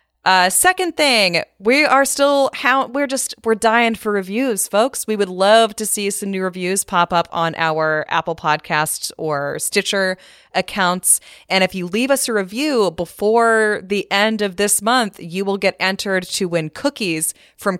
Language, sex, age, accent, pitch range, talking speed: English, female, 20-39, American, 165-225 Hz, 175 wpm